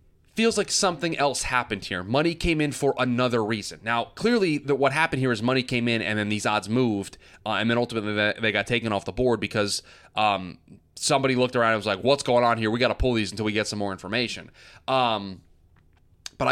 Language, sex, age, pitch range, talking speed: English, male, 20-39, 100-120 Hz, 225 wpm